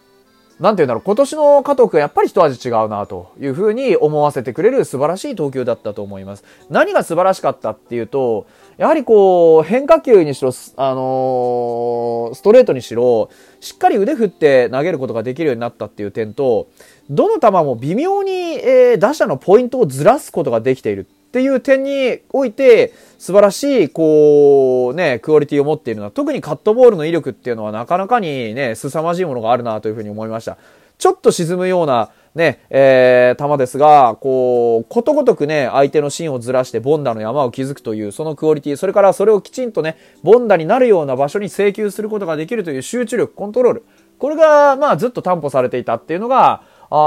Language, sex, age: Japanese, male, 30-49